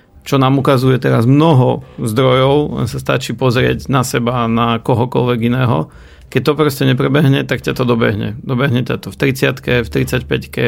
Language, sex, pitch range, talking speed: Slovak, male, 115-135 Hz, 170 wpm